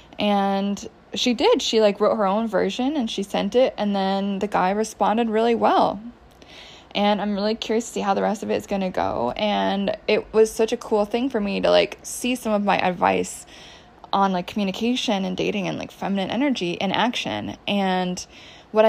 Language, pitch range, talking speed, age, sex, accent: English, 190-225 Hz, 205 wpm, 20-39, female, American